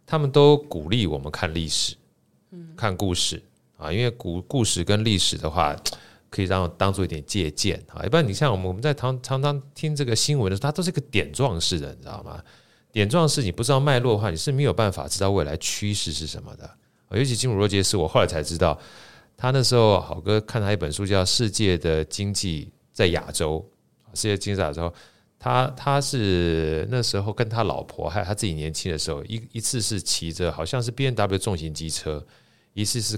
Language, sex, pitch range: Chinese, male, 80-110 Hz